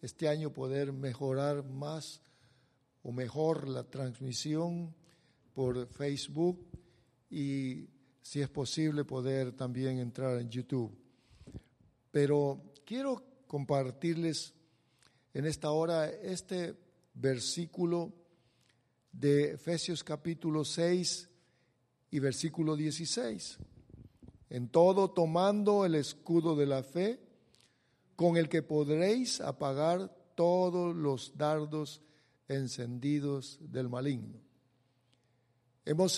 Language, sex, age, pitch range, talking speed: English, male, 50-69, 130-170 Hz, 90 wpm